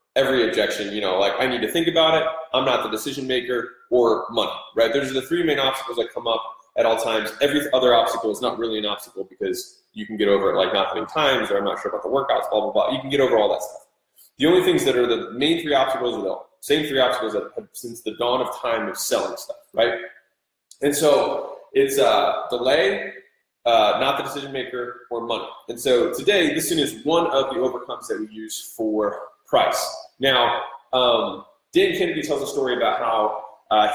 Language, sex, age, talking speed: English, male, 20-39, 225 wpm